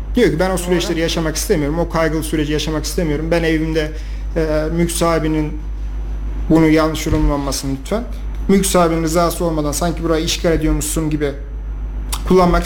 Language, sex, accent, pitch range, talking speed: Turkish, male, native, 150-175 Hz, 135 wpm